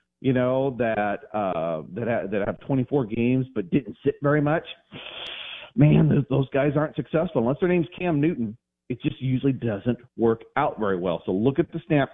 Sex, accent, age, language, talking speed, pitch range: male, American, 40-59, English, 195 wpm, 115-150 Hz